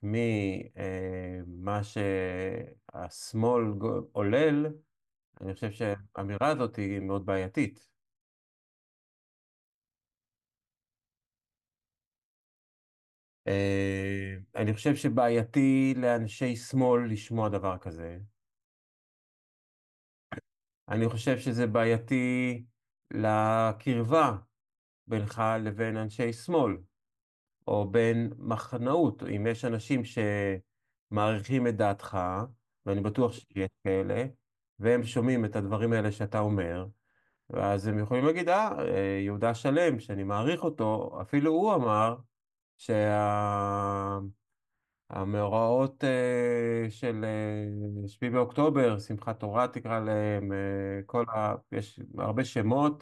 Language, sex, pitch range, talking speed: Hebrew, male, 100-120 Hz, 80 wpm